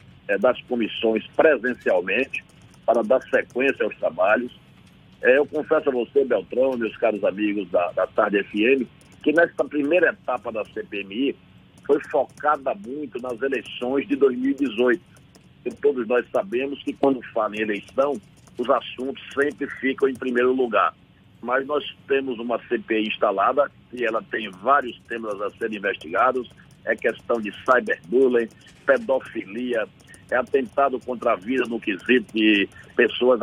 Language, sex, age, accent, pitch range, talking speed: Portuguese, male, 60-79, Brazilian, 115-145 Hz, 140 wpm